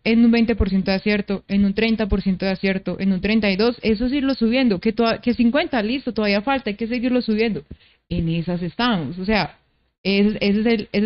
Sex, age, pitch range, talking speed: female, 30-49, 195-245 Hz, 180 wpm